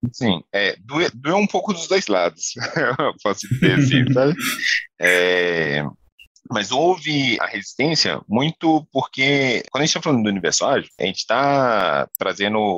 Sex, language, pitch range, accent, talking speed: male, Portuguese, 105-145 Hz, Brazilian, 150 wpm